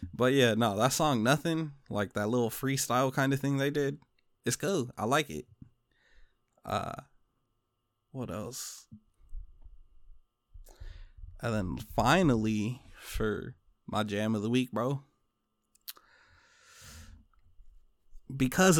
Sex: male